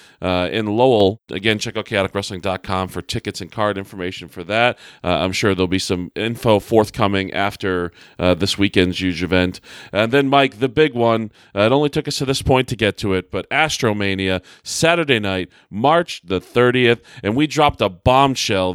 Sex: male